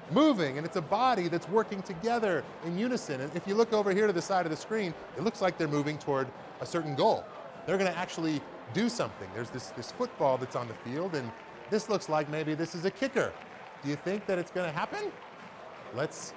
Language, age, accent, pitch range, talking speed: English, 30-49, American, 150-210 Hz, 230 wpm